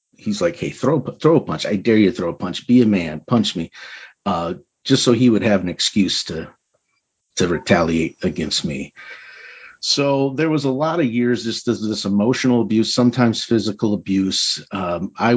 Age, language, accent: 50-69, English, American